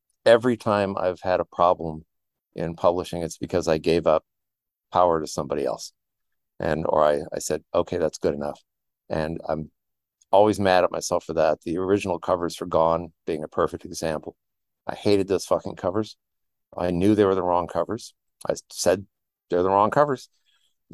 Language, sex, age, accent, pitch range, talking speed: English, male, 50-69, American, 90-115 Hz, 180 wpm